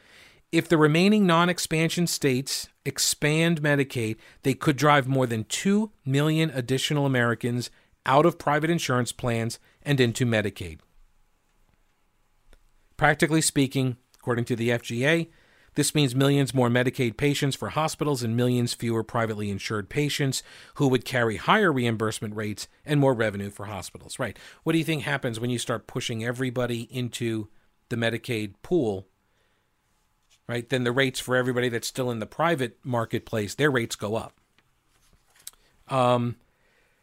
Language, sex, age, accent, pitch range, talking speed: English, male, 40-59, American, 115-145 Hz, 140 wpm